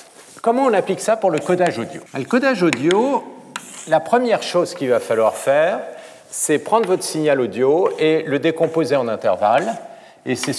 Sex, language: male, French